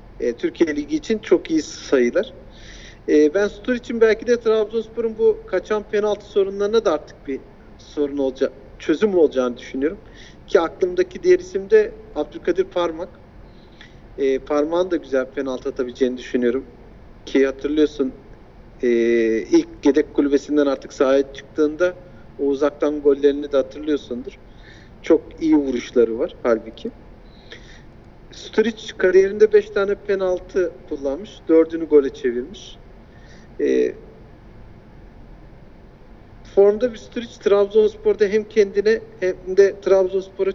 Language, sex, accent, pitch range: Turkish, male, native, 140-220 Hz